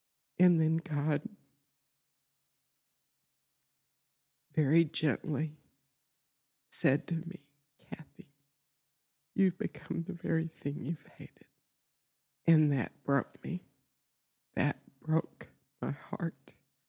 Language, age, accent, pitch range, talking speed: English, 60-79, American, 140-160 Hz, 85 wpm